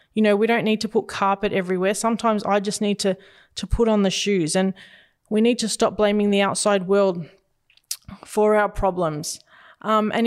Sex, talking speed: female, 195 wpm